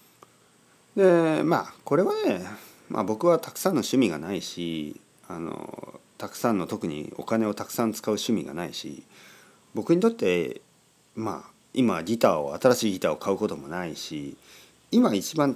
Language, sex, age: Japanese, male, 40-59